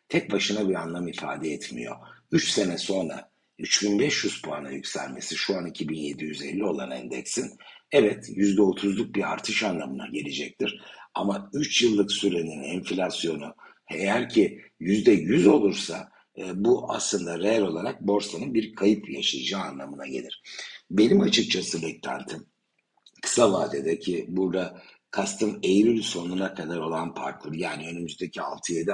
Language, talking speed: Turkish, 120 wpm